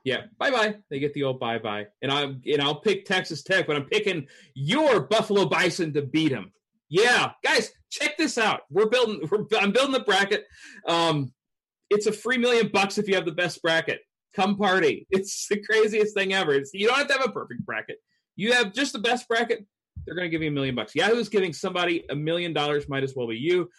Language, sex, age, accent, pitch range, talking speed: English, male, 30-49, American, 140-210 Hz, 220 wpm